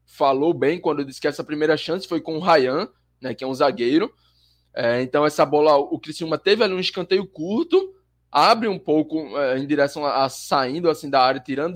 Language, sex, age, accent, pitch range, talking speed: Portuguese, male, 20-39, Brazilian, 125-160 Hz, 190 wpm